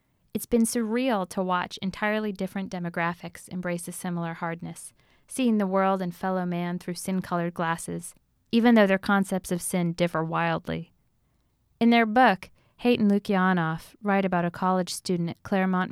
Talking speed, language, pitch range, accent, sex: 160 wpm, English, 175-210 Hz, American, female